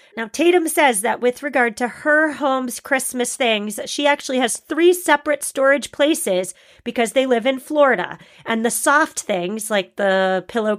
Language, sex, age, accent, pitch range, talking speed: English, female, 40-59, American, 210-265 Hz, 165 wpm